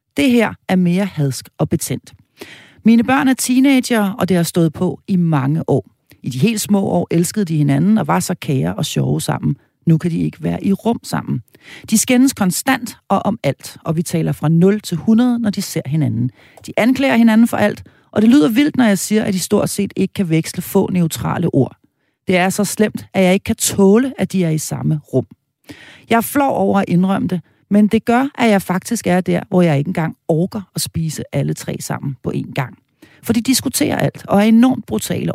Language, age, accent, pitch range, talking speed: Danish, 40-59, native, 160-220 Hz, 220 wpm